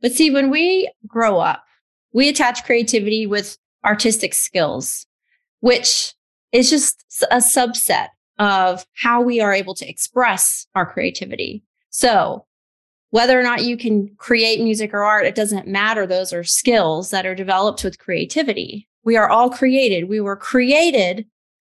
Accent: American